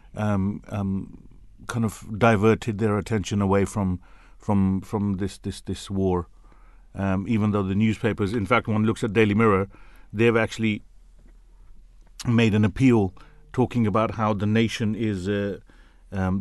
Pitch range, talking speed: 95-115 Hz, 145 wpm